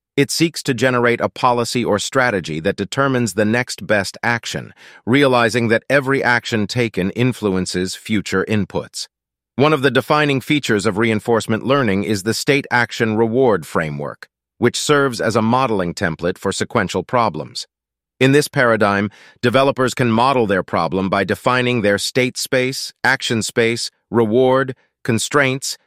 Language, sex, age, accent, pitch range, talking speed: English, male, 40-59, American, 100-130 Hz, 145 wpm